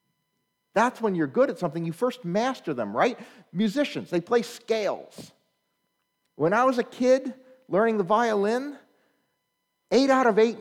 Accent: American